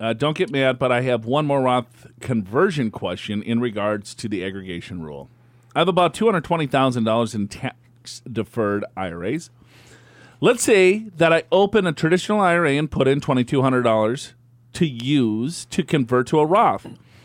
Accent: American